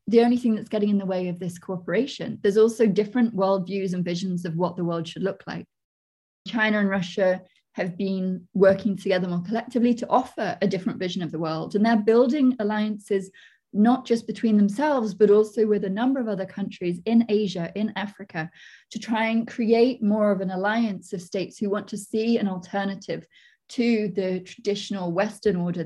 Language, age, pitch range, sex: English, 20-39, 185-230 Hz, female